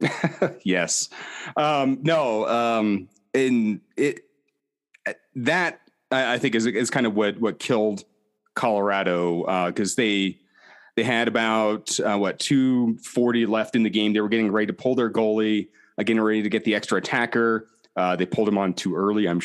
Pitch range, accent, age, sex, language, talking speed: 95-125 Hz, American, 30-49, male, English, 170 wpm